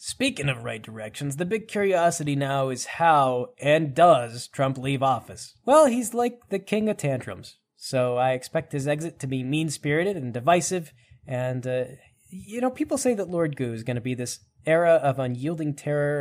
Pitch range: 135-210 Hz